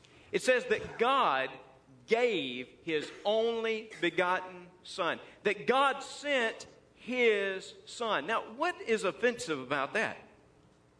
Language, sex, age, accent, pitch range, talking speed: English, male, 40-59, American, 145-225 Hz, 110 wpm